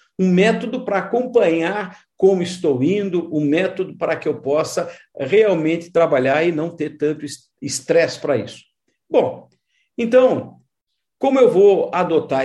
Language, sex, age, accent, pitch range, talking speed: Portuguese, male, 50-69, Brazilian, 140-220 Hz, 135 wpm